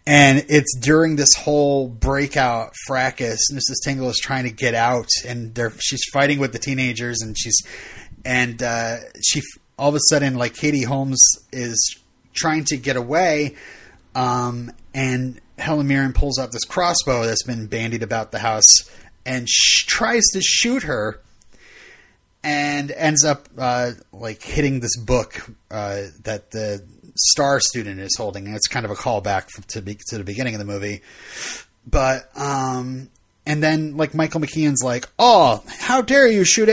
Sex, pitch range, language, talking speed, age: male, 120-155 Hz, English, 160 wpm, 30-49